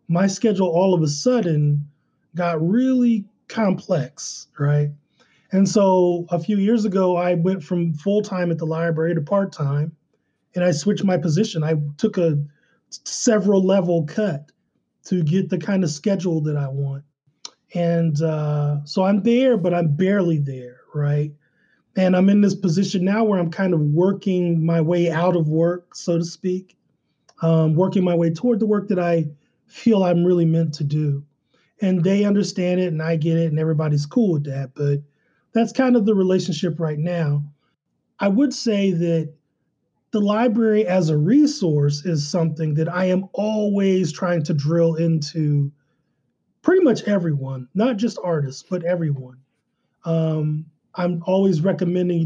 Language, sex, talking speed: English, male, 160 wpm